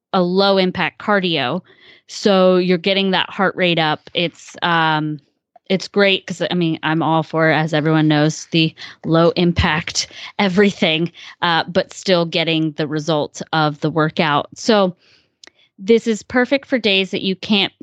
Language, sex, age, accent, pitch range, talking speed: English, female, 20-39, American, 160-205 Hz, 155 wpm